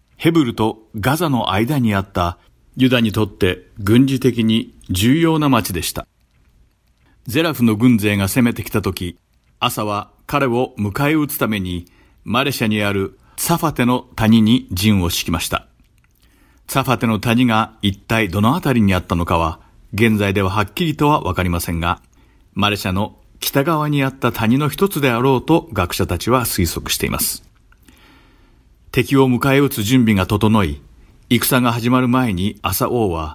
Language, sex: Japanese, male